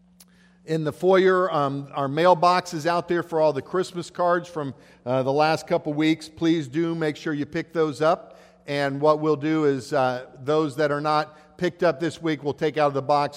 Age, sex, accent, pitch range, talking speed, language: 50-69, male, American, 135-175 Hz, 215 wpm, English